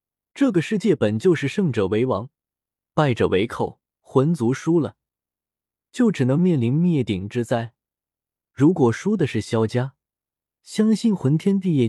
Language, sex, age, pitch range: Chinese, male, 20-39, 115-170 Hz